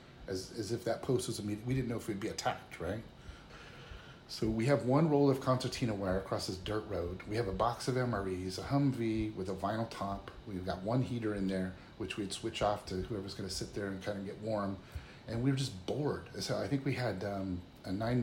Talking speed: 245 wpm